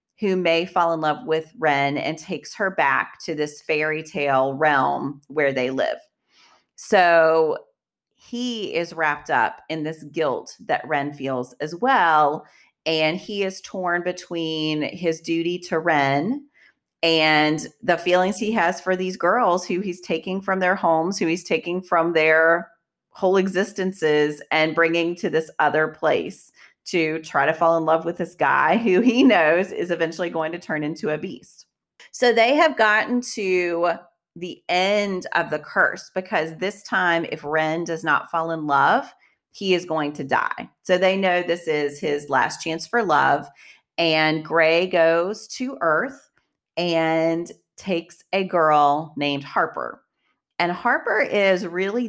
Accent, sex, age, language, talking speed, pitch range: American, female, 30-49, English, 160 wpm, 155-185 Hz